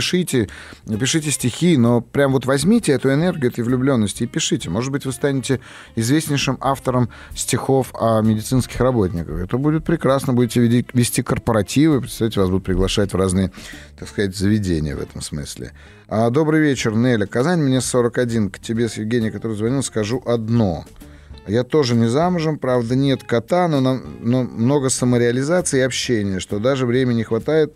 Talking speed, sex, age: 160 wpm, male, 30-49